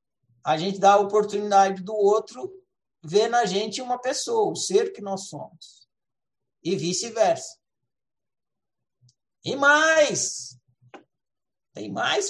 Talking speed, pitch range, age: 110 wpm, 165-235 Hz, 60-79